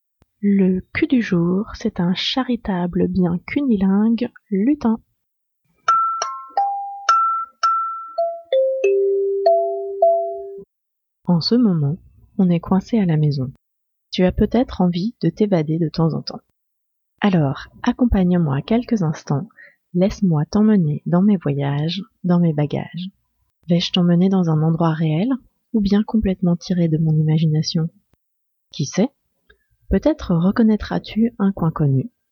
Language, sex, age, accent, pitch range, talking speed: French, female, 30-49, French, 165-260 Hz, 115 wpm